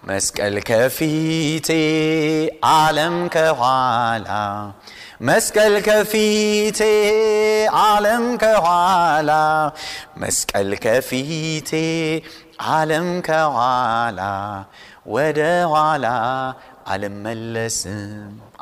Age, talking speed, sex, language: 30-49, 40 wpm, male, Amharic